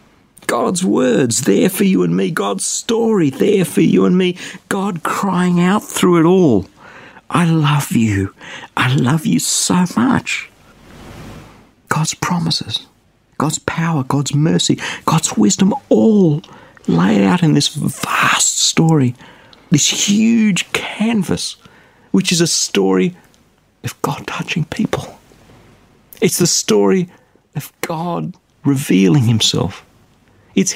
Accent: British